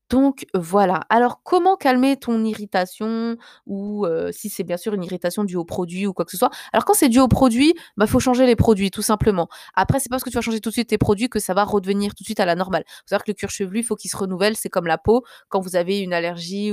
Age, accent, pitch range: 20-39, French, 180-225 Hz